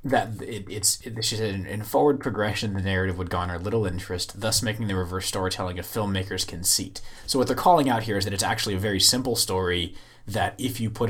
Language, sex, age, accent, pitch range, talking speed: English, male, 20-39, American, 95-115 Hz, 210 wpm